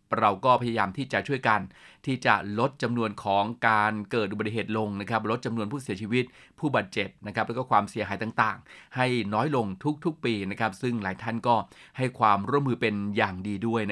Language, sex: Thai, male